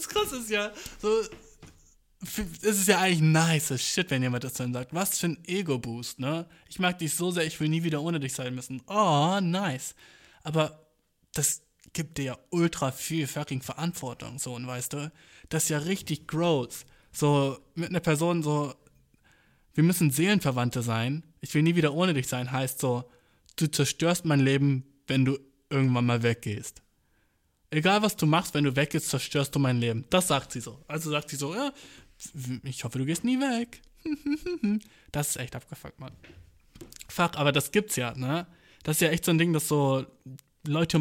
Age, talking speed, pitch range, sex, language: 20-39, 185 wpm, 130-165 Hz, male, German